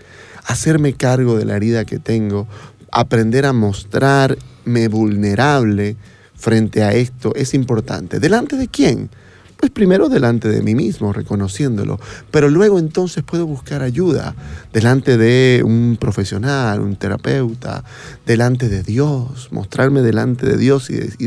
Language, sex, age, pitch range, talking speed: Spanish, male, 30-49, 105-140 Hz, 130 wpm